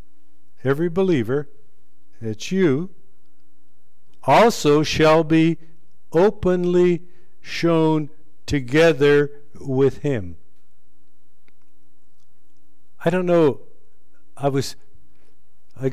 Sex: male